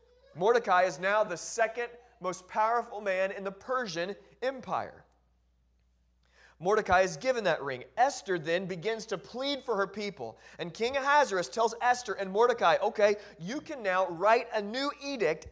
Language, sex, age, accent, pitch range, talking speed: English, male, 30-49, American, 155-220 Hz, 155 wpm